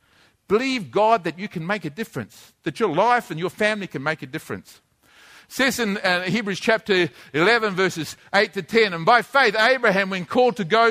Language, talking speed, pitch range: English, 200 wpm, 160-220 Hz